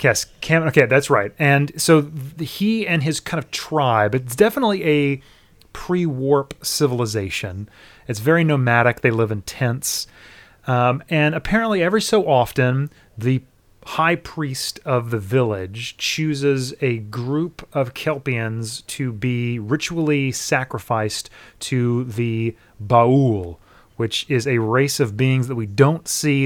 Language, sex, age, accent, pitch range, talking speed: English, male, 30-49, American, 110-150 Hz, 135 wpm